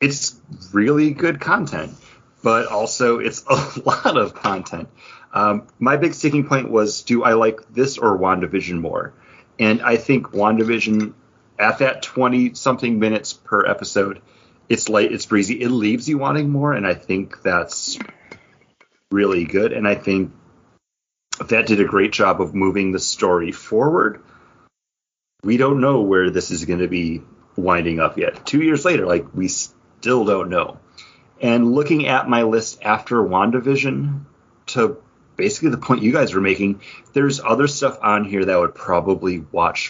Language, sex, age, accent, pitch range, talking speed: English, male, 30-49, American, 95-130 Hz, 165 wpm